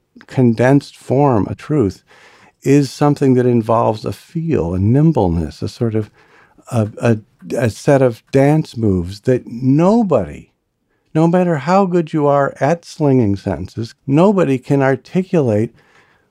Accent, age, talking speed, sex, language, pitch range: American, 50-69, 135 wpm, male, English, 105-140 Hz